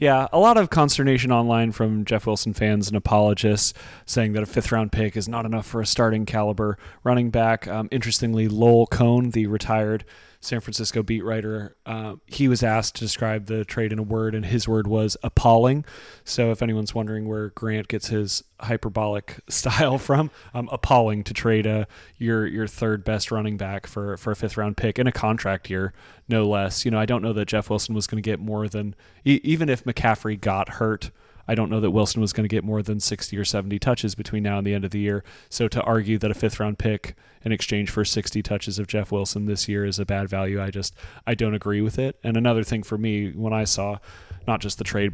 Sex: male